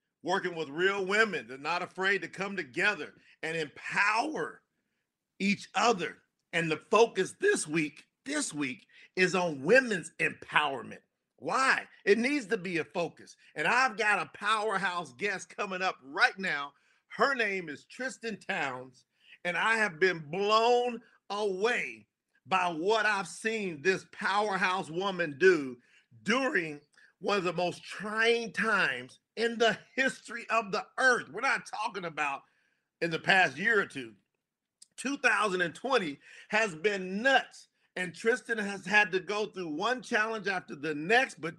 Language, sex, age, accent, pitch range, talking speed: English, male, 50-69, American, 175-225 Hz, 145 wpm